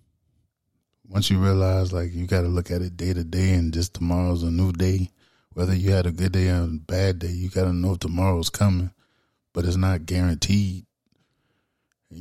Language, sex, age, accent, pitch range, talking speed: English, male, 20-39, American, 85-95 Hz, 200 wpm